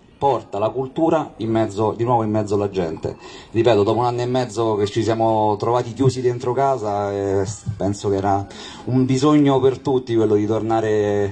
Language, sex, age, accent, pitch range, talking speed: Italian, male, 30-49, native, 100-120 Hz, 185 wpm